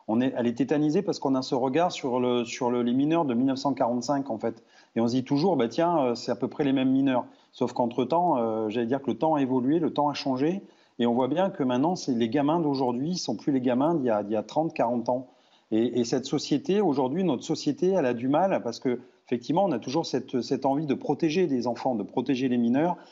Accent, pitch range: French, 120-150 Hz